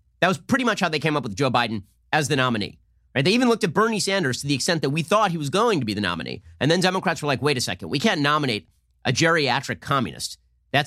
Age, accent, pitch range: 30-49, American, 120-165 Hz